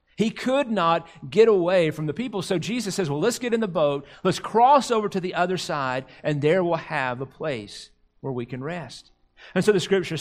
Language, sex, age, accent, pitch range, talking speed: English, male, 40-59, American, 145-205 Hz, 225 wpm